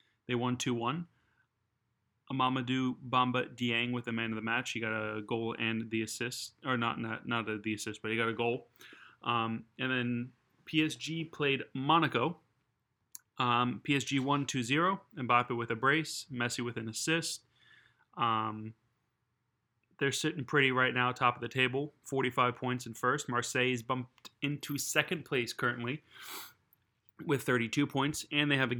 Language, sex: English, male